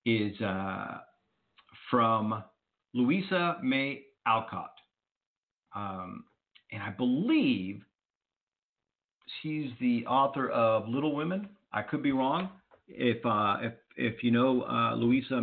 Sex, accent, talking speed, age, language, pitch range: male, American, 110 wpm, 50-69, English, 125-180 Hz